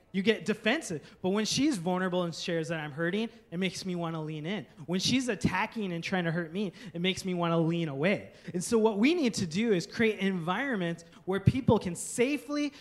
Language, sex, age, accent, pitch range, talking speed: English, male, 20-39, American, 175-220 Hz, 215 wpm